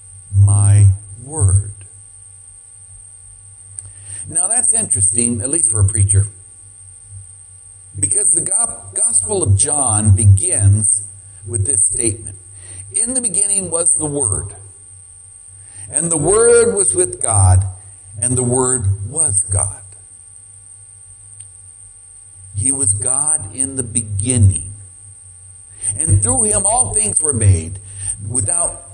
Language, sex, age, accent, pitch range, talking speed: English, male, 60-79, American, 95-110 Hz, 105 wpm